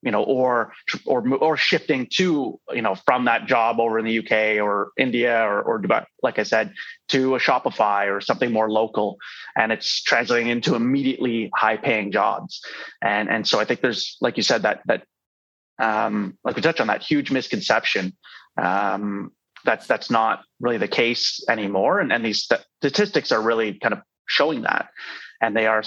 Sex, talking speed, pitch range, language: male, 180 wpm, 110-130 Hz, English